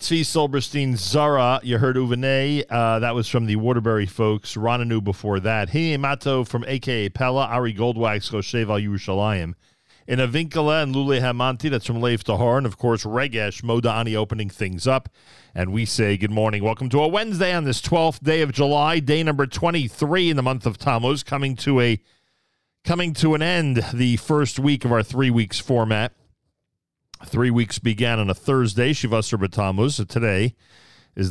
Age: 40-59